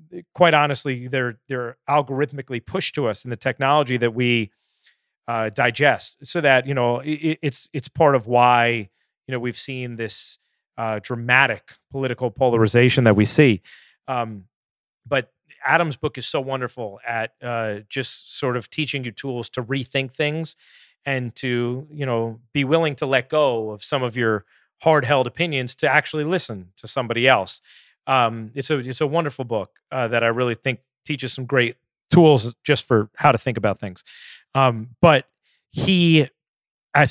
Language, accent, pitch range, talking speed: English, American, 120-150 Hz, 165 wpm